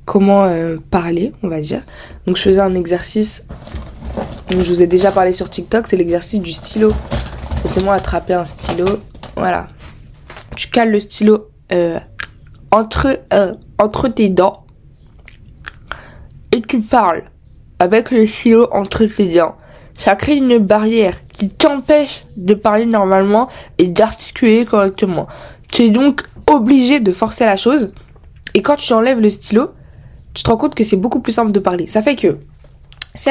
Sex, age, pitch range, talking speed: female, 20-39, 195-240 Hz, 160 wpm